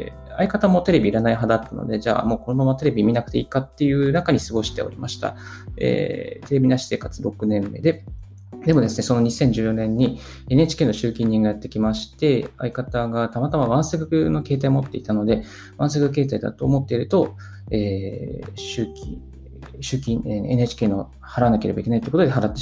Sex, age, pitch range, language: male, 20-39, 105-135 Hz, Japanese